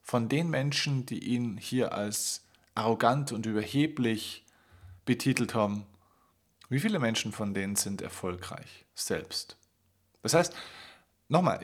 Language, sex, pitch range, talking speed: German, male, 105-140 Hz, 120 wpm